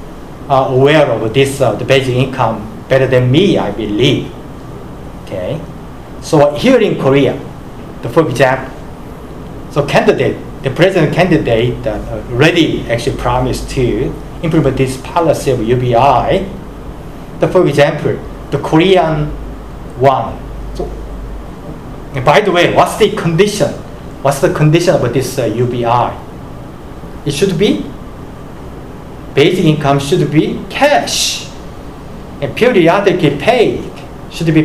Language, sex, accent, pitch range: Korean, male, Japanese, 135-170 Hz